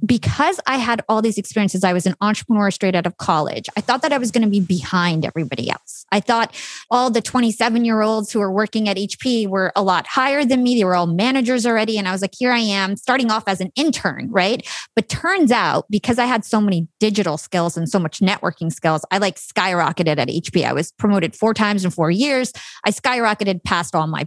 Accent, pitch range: American, 180-230 Hz